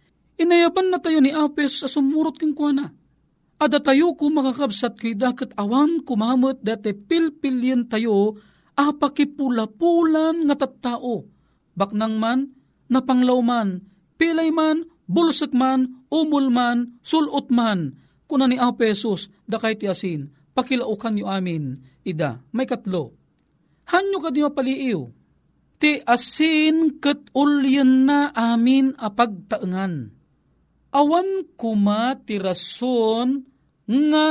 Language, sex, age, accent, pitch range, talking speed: Filipino, male, 40-59, native, 210-285 Hz, 110 wpm